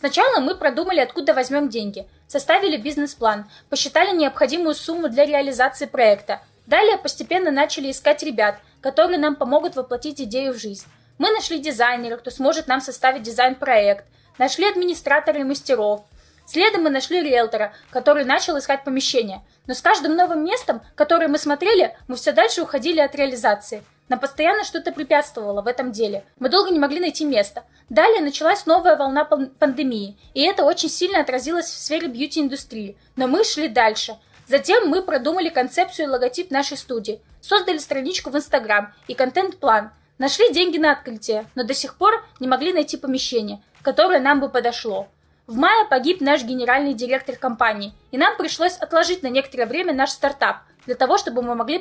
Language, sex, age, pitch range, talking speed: Russian, female, 10-29, 255-330 Hz, 165 wpm